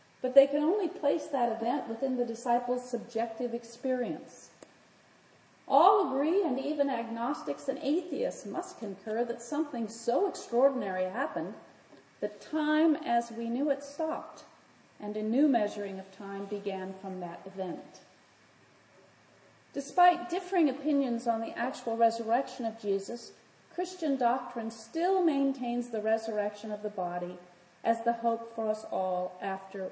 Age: 40-59